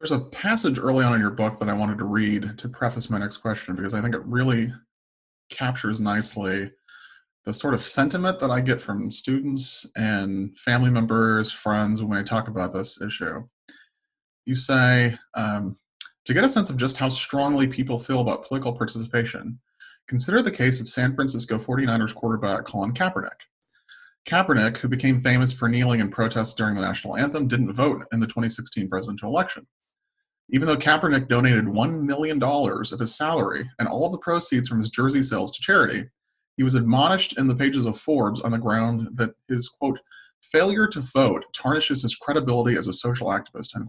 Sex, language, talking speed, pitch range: male, English, 180 wpm, 110-135 Hz